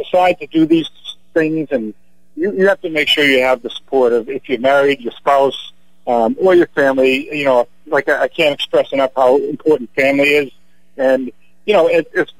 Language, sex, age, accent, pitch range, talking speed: English, male, 50-69, American, 130-165 Hz, 210 wpm